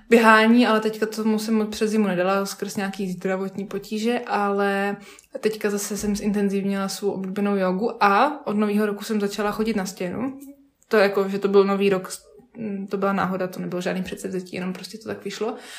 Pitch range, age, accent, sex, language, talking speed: 195-220 Hz, 20-39, native, female, Czech, 185 wpm